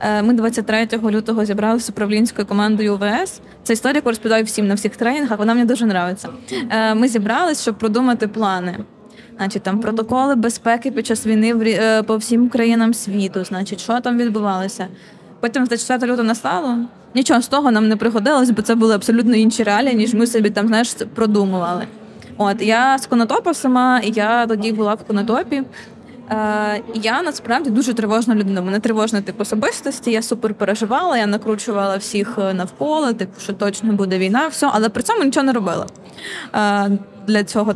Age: 20-39